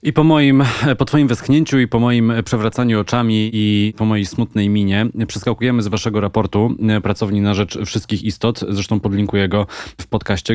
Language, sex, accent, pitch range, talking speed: Polish, male, native, 100-120 Hz, 170 wpm